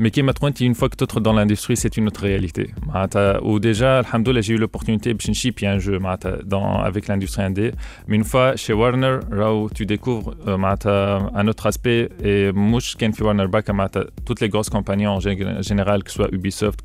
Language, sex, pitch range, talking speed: Arabic, male, 105-135 Hz, 180 wpm